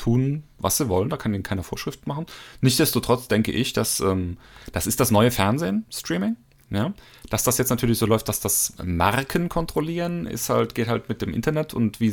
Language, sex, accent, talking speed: German, male, German, 205 wpm